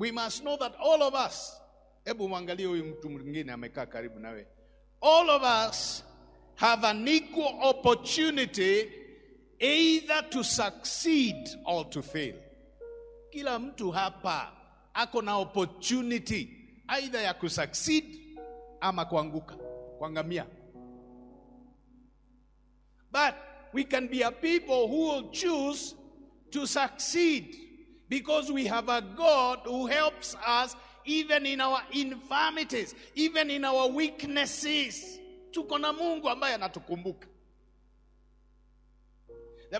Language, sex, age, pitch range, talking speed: English, male, 50-69, 195-290 Hz, 90 wpm